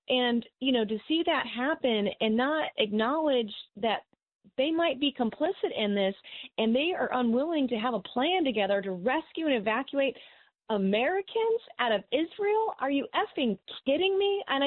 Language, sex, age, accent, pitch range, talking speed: English, female, 30-49, American, 170-245 Hz, 165 wpm